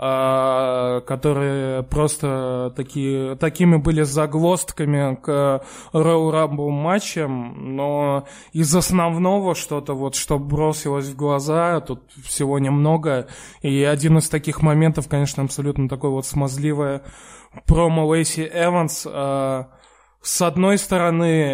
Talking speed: 100 wpm